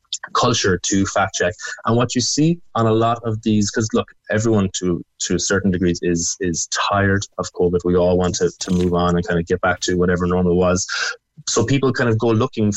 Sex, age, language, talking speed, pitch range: male, 20-39, English, 230 wpm, 95-115 Hz